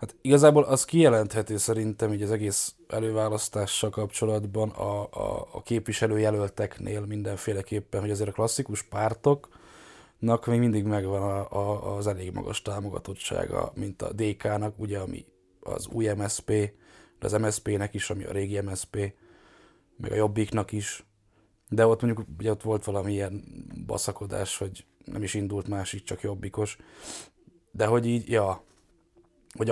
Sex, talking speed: male, 145 wpm